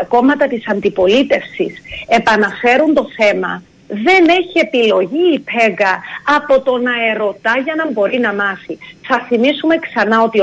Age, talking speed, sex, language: 40-59, 140 wpm, female, Greek